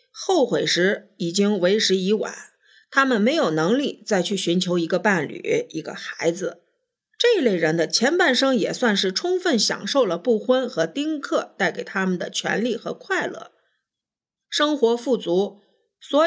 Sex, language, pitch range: female, Chinese, 225-340 Hz